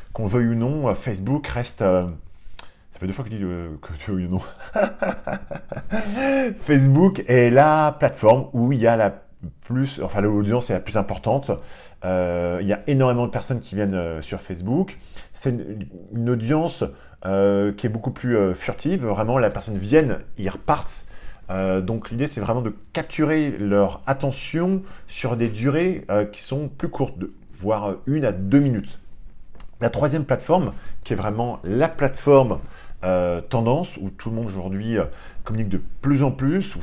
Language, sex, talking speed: French, male, 165 wpm